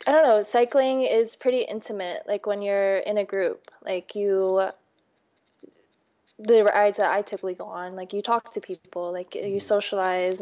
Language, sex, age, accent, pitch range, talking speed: English, female, 20-39, American, 190-225 Hz, 175 wpm